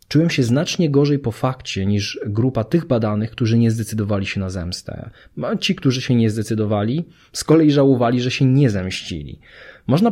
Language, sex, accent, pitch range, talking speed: Polish, male, native, 105-140 Hz, 170 wpm